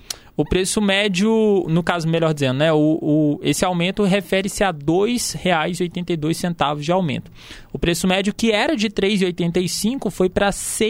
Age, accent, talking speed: 20-39, Brazilian, 145 wpm